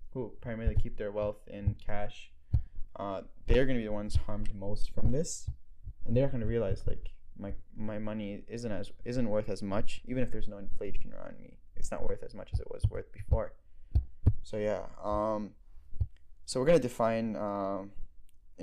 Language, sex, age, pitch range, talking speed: English, male, 10-29, 100-115 Hz, 180 wpm